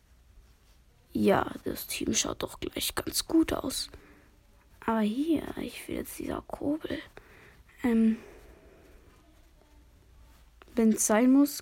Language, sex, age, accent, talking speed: German, female, 20-39, German, 110 wpm